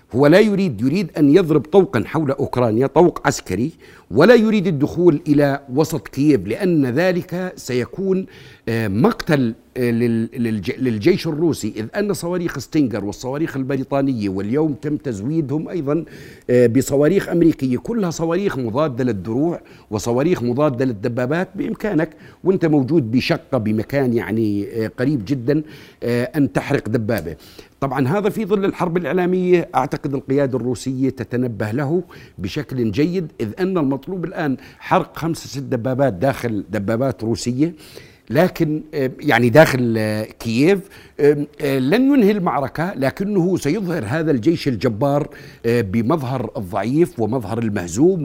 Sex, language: male, Arabic